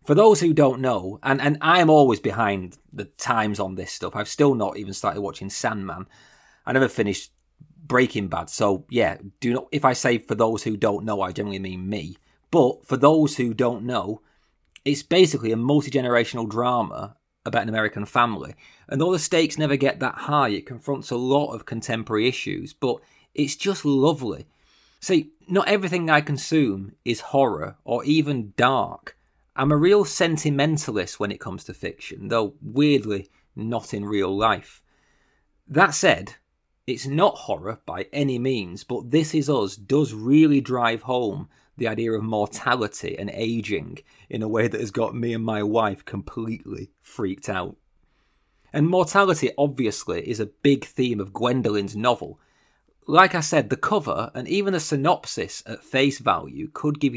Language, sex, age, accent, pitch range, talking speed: English, male, 30-49, British, 110-145 Hz, 170 wpm